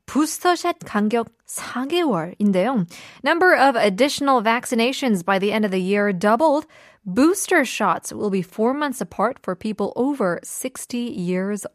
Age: 20-39